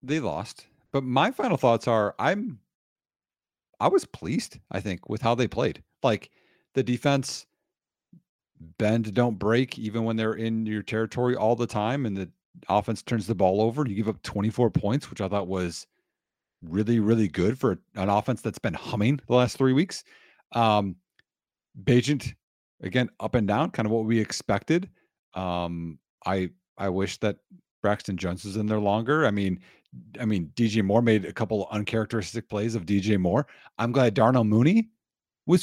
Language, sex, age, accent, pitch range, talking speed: English, male, 40-59, American, 105-135 Hz, 175 wpm